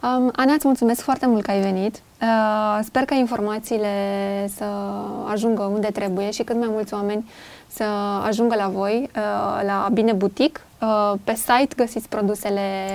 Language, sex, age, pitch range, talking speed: Romanian, female, 20-39, 205-240 Hz, 145 wpm